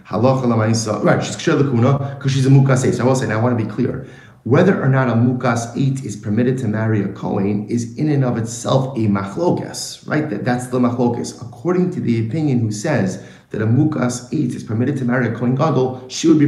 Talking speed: 225 wpm